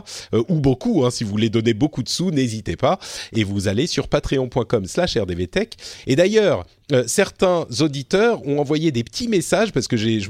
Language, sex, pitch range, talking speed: French, male, 110-150 Hz, 190 wpm